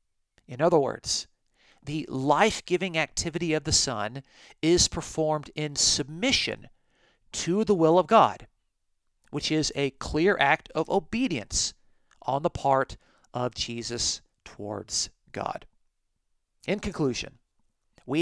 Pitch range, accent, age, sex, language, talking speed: 130-175 Hz, American, 40-59, male, English, 115 wpm